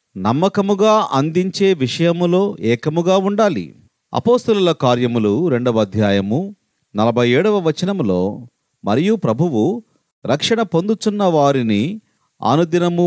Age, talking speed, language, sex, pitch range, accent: 40-59, 80 wpm, Telugu, male, 130-185 Hz, native